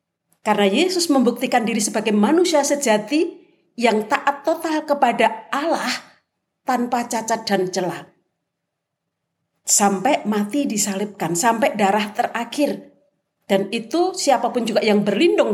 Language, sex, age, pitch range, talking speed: Indonesian, female, 40-59, 175-230 Hz, 110 wpm